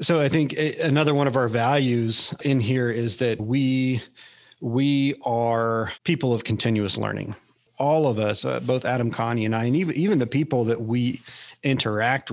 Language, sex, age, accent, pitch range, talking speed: English, male, 40-59, American, 110-130 Hz, 175 wpm